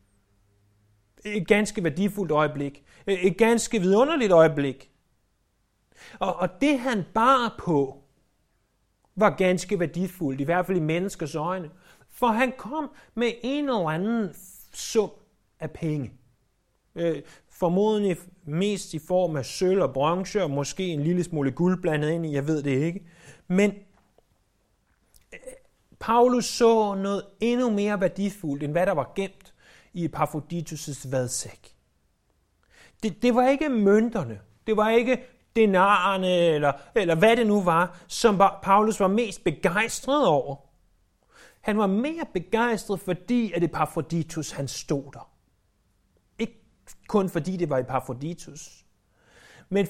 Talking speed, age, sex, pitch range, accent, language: 130 wpm, 30-49, male, 135-205 Hz, native, Danish